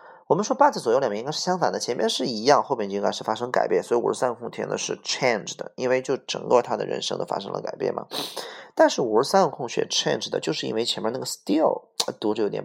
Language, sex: Chinese, male